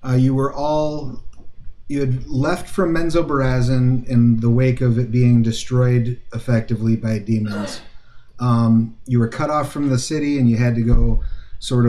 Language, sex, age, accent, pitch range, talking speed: English, male, 30-49, American, 110-130 Hz, 170 wpm